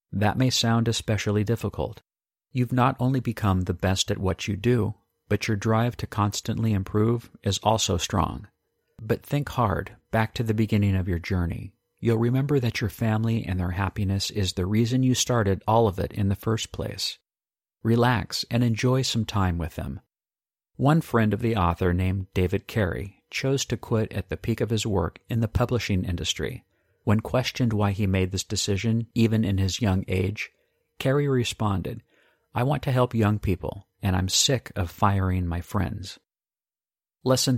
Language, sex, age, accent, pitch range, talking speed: English, male, 50-69, American, 95-120 Hz, 175 wpm